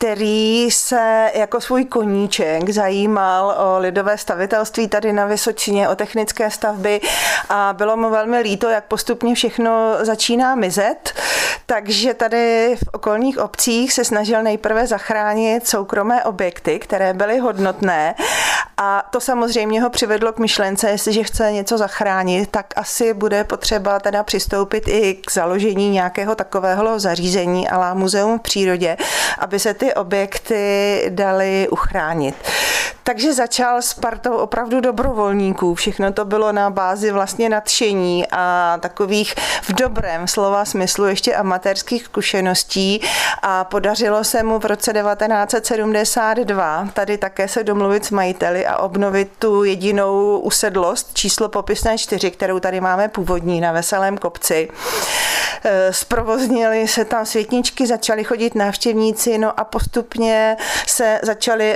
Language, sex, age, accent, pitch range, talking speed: Czech, female, 30-49, native, 200-230 Hz, 130 wpm